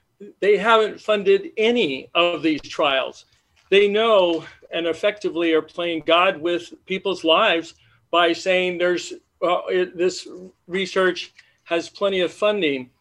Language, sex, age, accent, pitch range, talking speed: English, male, 50-69, American, 160-195 Hz, 130 wpm